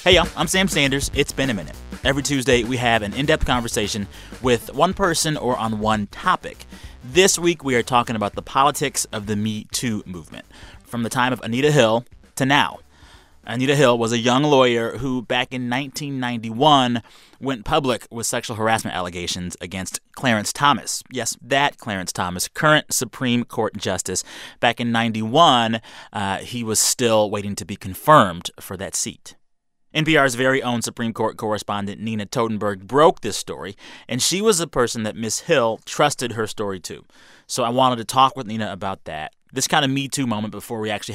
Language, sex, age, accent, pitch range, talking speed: English, male, 30-49, American, 105-135 Hz, 185 wpm